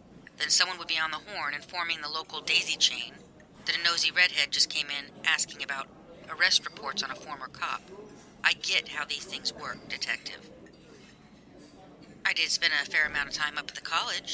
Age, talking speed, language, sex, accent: 40-59, 195 wpm, English, female, American